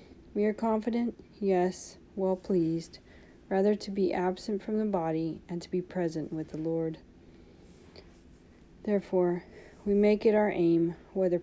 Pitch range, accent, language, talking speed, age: 160-200 Hz, American, English, 135 wpm, 40-59